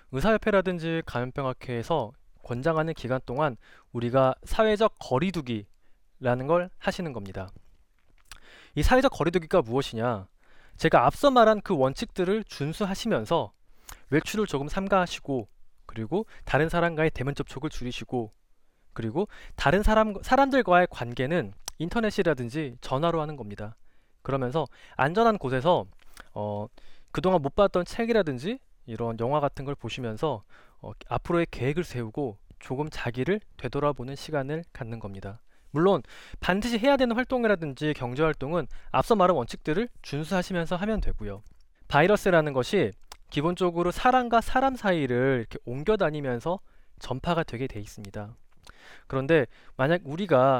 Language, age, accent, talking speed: English, 20-39, Korean, 105 wpm